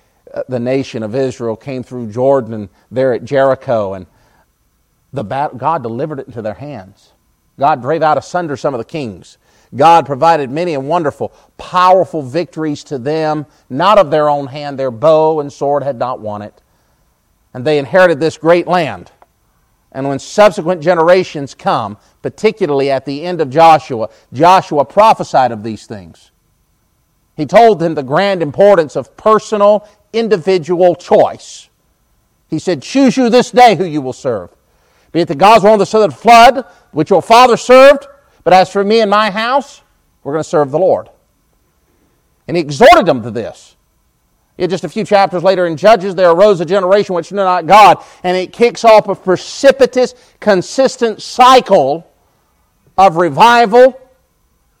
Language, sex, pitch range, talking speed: English, male, 135-205 Hz, 165 wpm